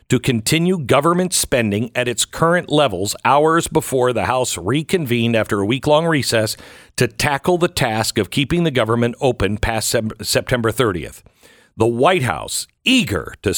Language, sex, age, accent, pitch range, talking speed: English, male, 50-69, American, 125-190 Hz, 150 wpm